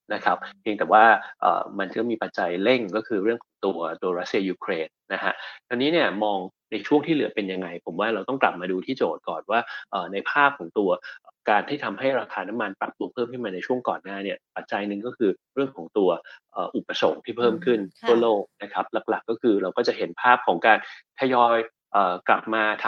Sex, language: male, Thai